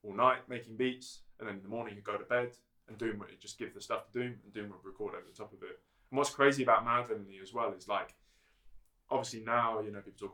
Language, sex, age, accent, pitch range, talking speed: English, male, 20-39, British, 100-125 Hz, 280 wpm